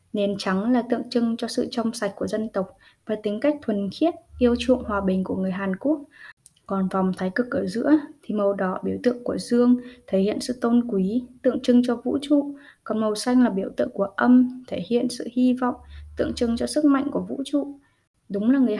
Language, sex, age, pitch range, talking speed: Vietnamese, female, 10-29, 200-255 Hz, 230 wpm